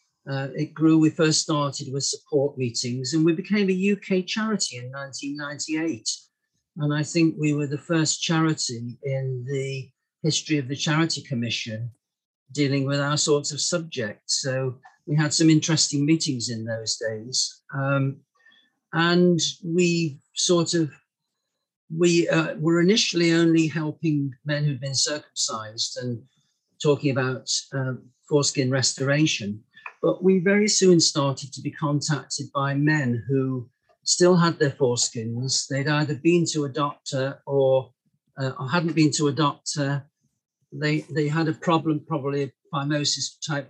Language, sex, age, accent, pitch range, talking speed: English, male, 50-69, British, 135-165 Hz, 145 wpm